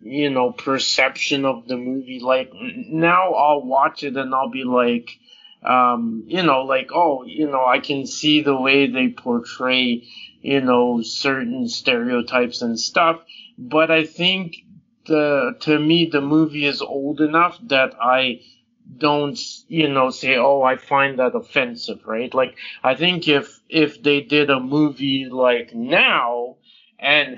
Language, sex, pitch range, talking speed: English, male, 125-155 Hz, 155 wpm